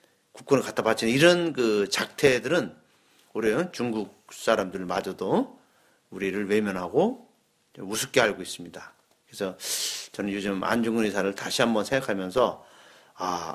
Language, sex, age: Korean, male, 40-59